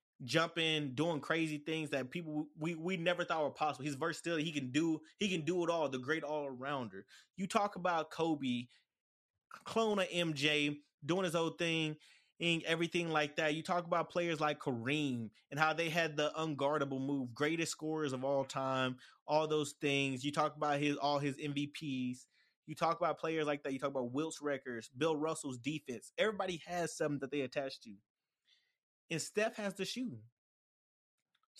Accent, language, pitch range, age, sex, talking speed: American, English, 135-165 Hz, 20-39, male, 170 wpm